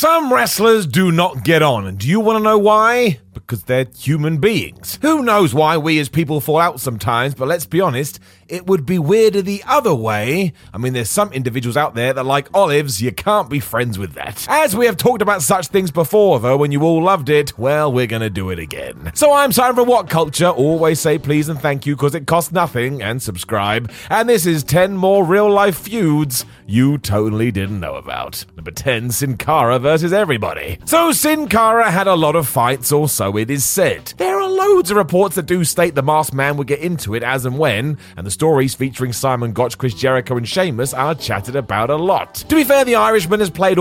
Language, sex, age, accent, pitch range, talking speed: English, male, 30-49, British, 125-185 Hz, 220 wpm